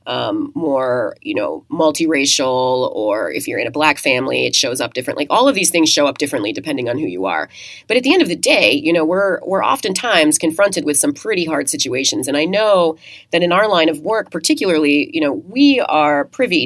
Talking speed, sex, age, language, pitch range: 220 wpm, female, 30-49, English, 150-240 Hz